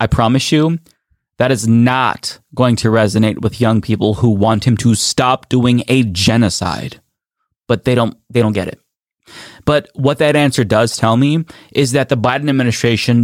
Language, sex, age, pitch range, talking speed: English, male, 20-39, 110-135 Hz, 175 wpm